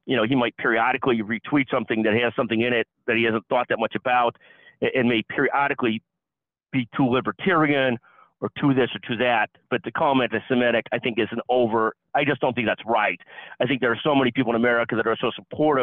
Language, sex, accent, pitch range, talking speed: English, male, American, 110-130 Hz, 230 wpm